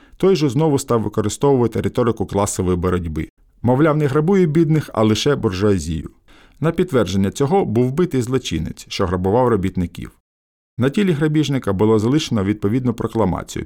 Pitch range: 100-130 Hz